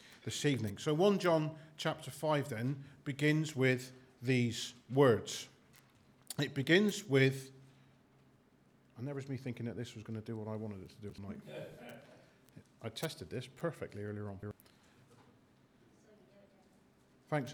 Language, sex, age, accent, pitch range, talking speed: English, male, 40-59, British, 130-180 Hz, 135 wpm